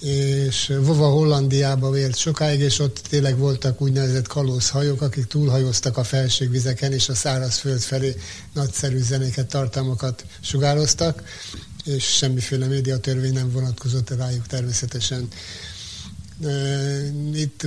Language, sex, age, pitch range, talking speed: Hungarian, male, 60-79, 130-140 Hz, 105 wpm